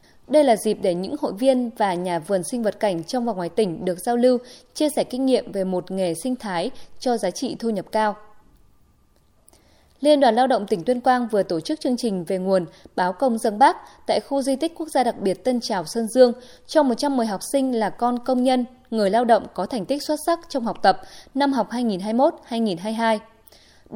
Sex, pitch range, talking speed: female, 205-270 Hz, 220 wpm